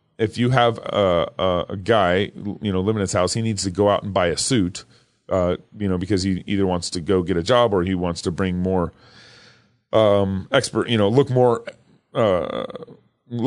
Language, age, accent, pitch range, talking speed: English, 30-49, American, 95-120 Hz, 205 wpm